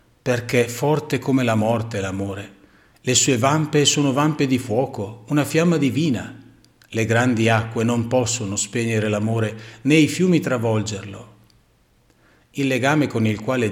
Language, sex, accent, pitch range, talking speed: Italian, male, native, 105-130 Hz, 140 wpm